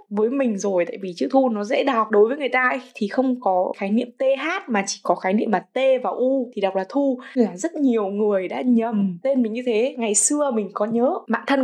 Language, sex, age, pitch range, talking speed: Vietnamese, female, 20-39, 210-275 Hz, 265 wpm